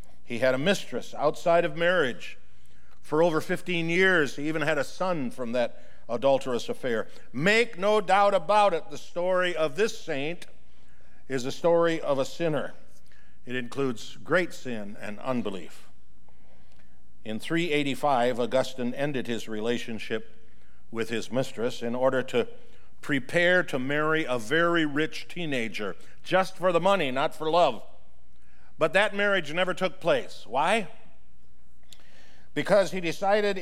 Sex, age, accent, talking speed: male, 50-69, American, 140 wpm